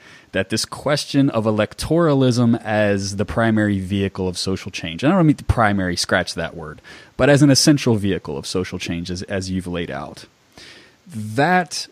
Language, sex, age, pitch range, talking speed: English, male, 30-49, 95-125 Hz, 180 wpm